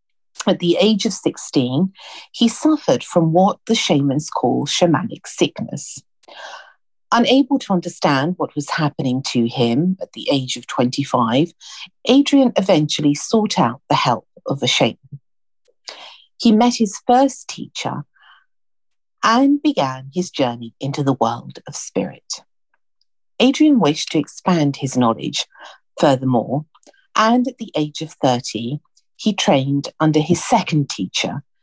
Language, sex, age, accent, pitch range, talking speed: English, female, 50-69, British, 145-235 Hz, 130 wpm